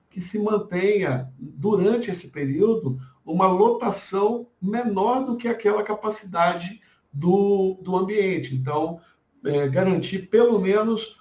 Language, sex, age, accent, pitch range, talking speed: Portuguese, male, 60-79, Brazilian, 155-205 Hz, 105 wpm